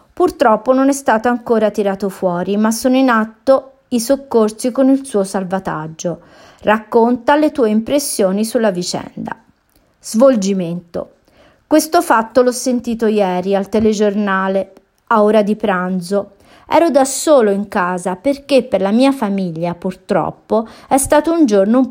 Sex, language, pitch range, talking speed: female, Italian, 195-265 Hz, 140 wpm